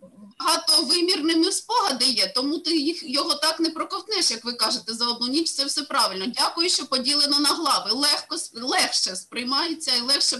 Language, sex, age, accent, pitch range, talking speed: Ukrainian, female, 20-39, native, 240-315 Hz, 180 wpm